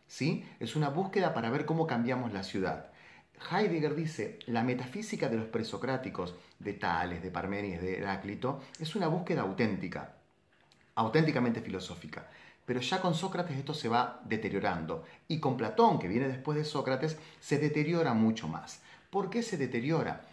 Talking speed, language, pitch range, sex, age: 155 wpm, Spanish, 110-165 Hz, male, 30-49